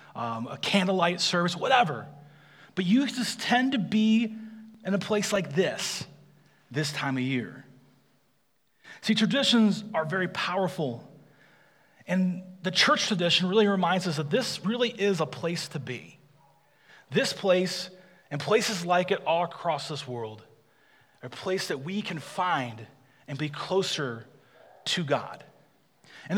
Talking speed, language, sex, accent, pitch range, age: 145 wpm, English, male, American, 155-215 Hz, 30-49